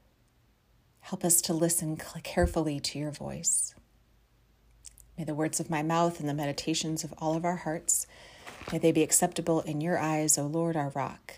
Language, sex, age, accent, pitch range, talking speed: English, female, 30-49, American, 135-195 Hz, 175 wpm